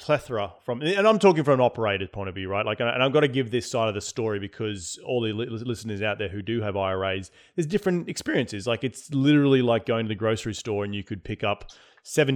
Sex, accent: male, Australian